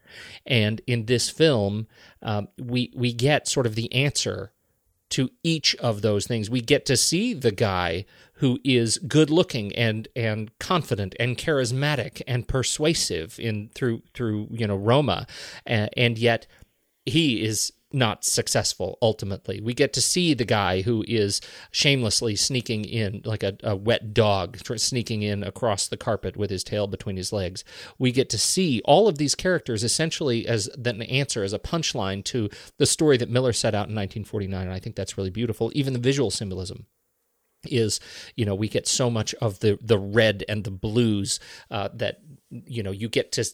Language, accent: English, American